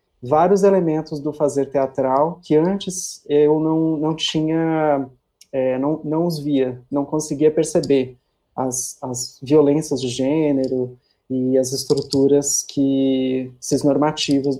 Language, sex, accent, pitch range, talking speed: Portuguese, male, Brazilian, 135-160 Hz, 120 wpm